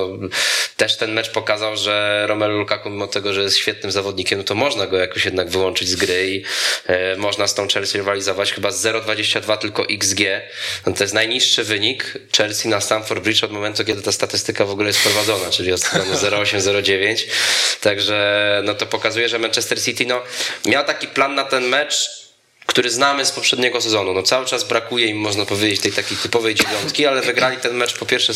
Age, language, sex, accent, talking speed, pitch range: 20-39, Polish, male, native, 195 wpm, 100-125 Hz